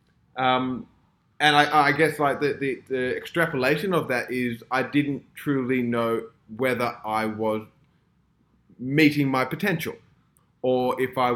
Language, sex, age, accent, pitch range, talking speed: English, male, 20-39, Australian, 115-140 Hz, 135 wpm